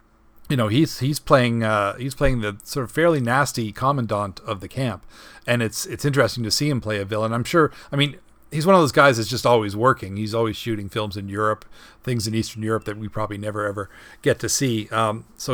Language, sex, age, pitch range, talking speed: English, male, 40-59, 105-125 Hz, 230 wpm